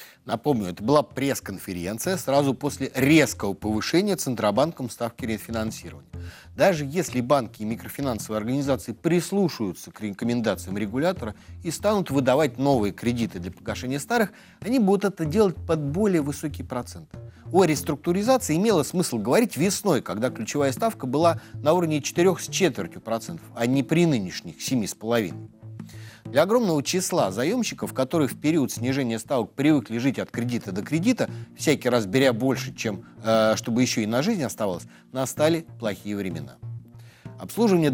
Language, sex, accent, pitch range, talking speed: Russian, male, native, 110-160 Hz, 140 wpm